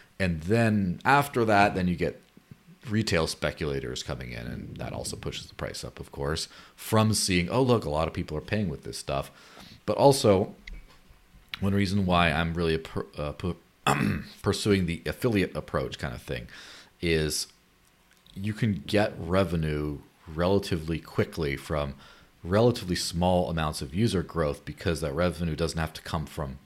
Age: 30-49